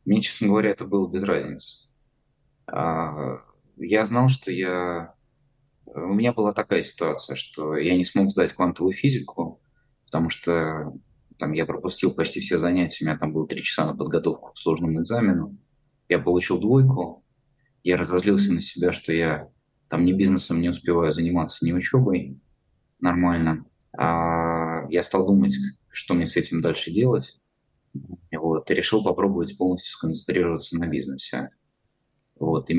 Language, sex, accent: Russian, male, native